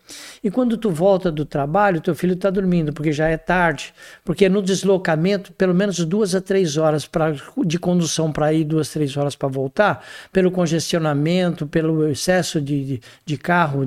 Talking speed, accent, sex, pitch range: 170 wpm, Brazilian, male, 160-195 Hz